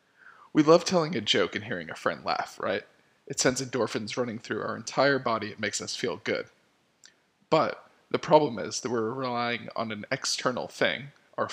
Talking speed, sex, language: 185 wpm, male, English